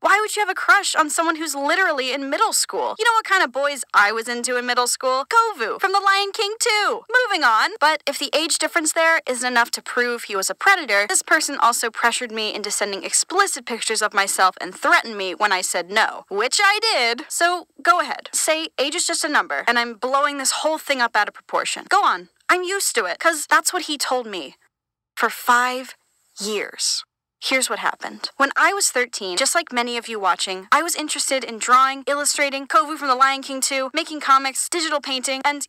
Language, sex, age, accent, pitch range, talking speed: English, female, 10-29, American, 245-340 Hz, 220 wpm